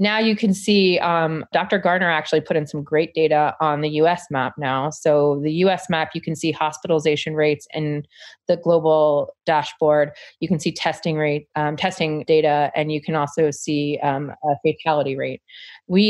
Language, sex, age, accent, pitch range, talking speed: English, female, 30-49, American, 145-170 Hz, 185 wpm